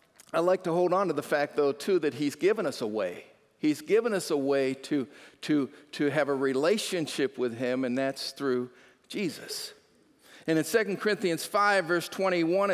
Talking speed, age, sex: 185 wpm, 50-69, male